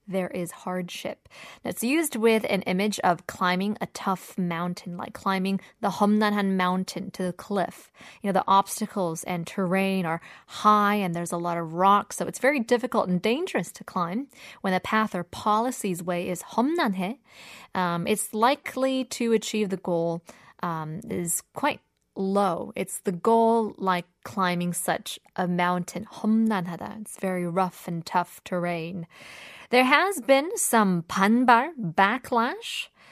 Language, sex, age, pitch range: Korean, female, 20-39, 180-230 Hz